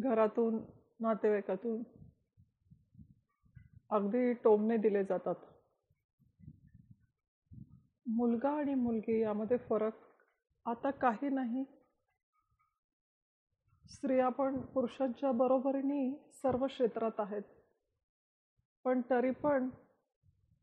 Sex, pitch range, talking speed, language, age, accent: female, 225-265 Hz, 65 wpm, Marathi, 40-59, native